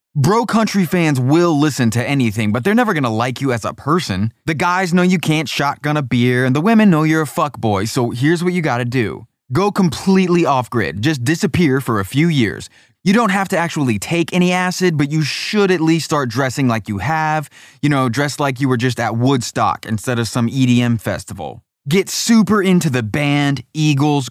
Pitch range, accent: 120-160 Hz, American